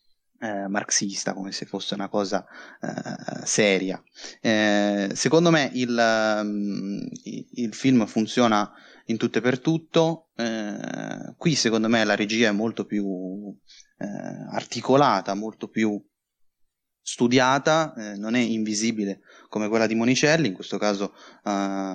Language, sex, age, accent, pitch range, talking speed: Italian, male, 20-39, native, 105-130 Hz, 130 wpm